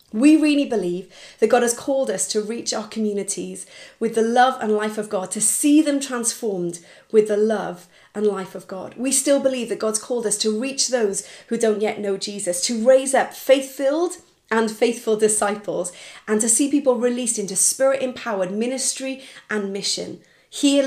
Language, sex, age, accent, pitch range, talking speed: English, female, 30-49, British, 205-245 Hz, 180 wpm